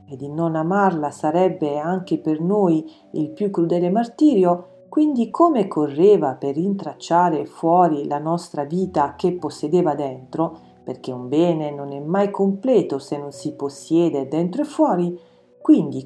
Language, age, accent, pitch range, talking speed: Italian, 40-59, native, 150-220 Hz, 145 wpm